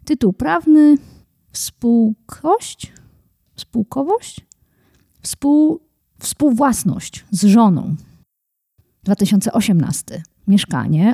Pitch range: 195-285 Hz